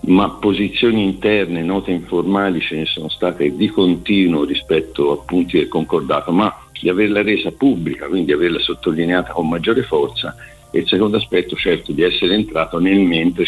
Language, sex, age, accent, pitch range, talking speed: Italian, male, 50-69, native, 85-105 Hz, 170 wpm